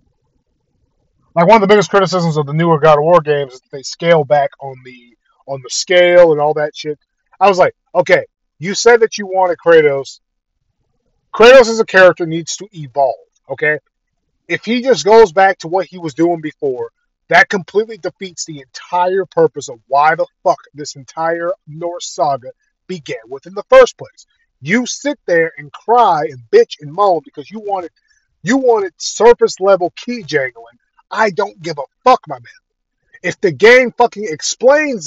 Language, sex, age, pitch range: English, male, 30-49, 165-240 Hz